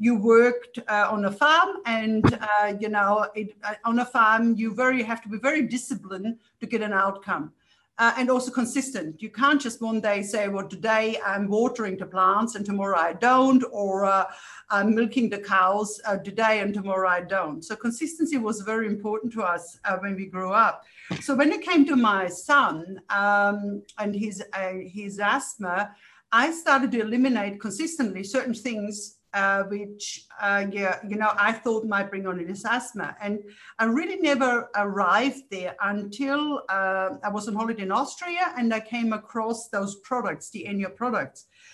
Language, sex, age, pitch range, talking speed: English, female, 60-79, 200-245 Hz, 180 wpm